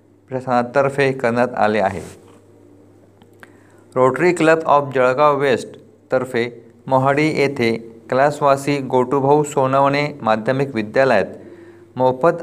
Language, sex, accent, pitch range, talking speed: Marathi, male, native, 115-140 Hz, 85 wpm